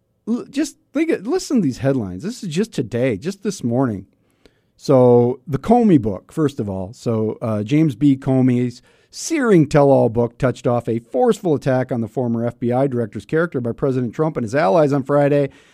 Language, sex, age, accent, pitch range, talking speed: English, male, 40-59, American, 100-135 Hz, 185 wpm